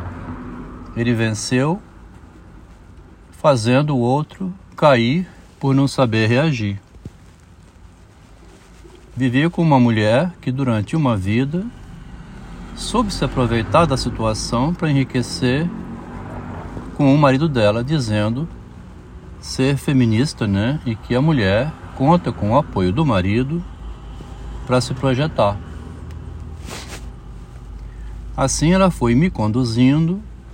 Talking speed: 100 wpm